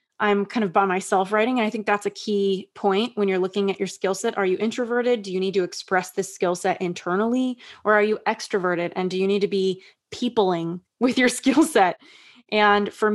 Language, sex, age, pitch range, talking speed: English, female, 20-39, 185-215 Hz, 225 wpm